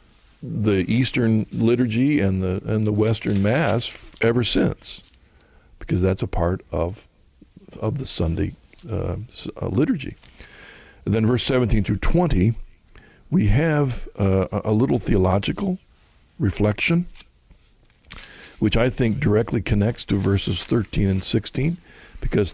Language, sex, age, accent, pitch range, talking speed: English, male, 60-79, American, 100-120 Hz, 120 wpm